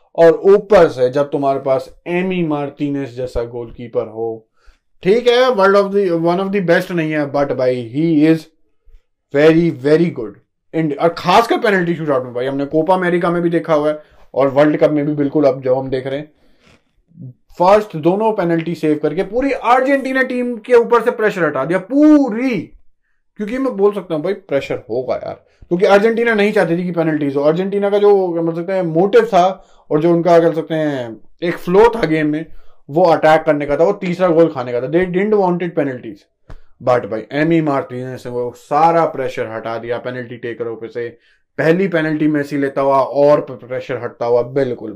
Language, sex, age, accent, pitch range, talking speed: Hindi, male, 20-39, native, 135-185 Hz, 190 wpm